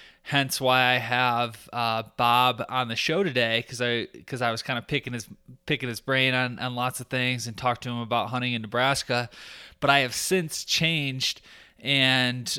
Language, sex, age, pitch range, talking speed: English, male, 20-39, 115-130 Hz, 195 wpm